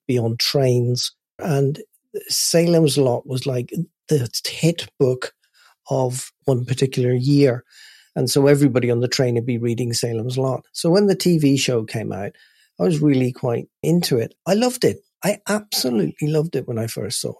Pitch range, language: 120-150 Hz, English